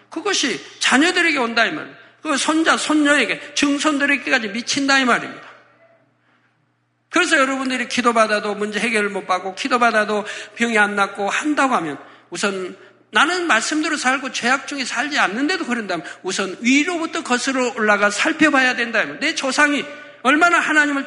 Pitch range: 220-310 Hz